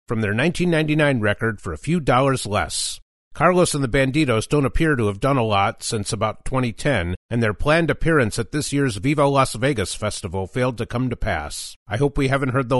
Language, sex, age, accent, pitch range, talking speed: English, male, 50-69, American, 105-155 Hz, 210 wpm